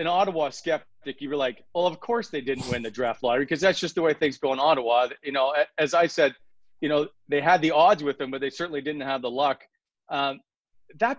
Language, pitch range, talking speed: English, 135-170 Hz, 245 wpm